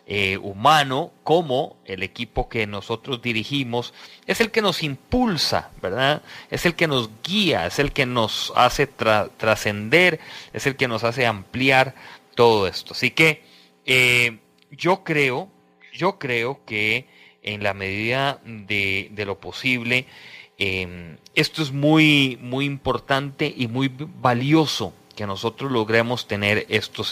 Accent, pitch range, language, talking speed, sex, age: Mexican, 105-140 Hz, English, 135 wpm, male, 30-49